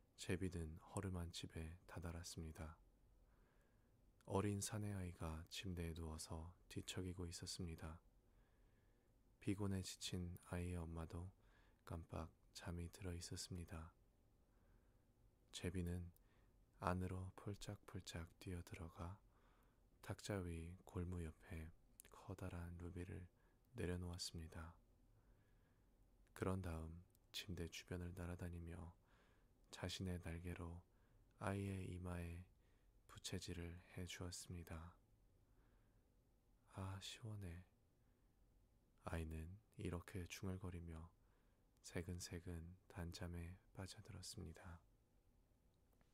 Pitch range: 85-105 Hz